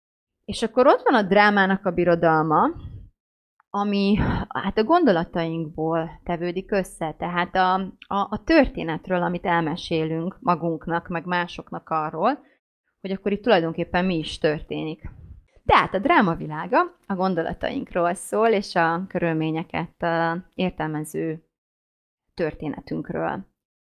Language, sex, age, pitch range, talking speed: Hungarian, female, 30-49, 170-210 Hz, 110 wpm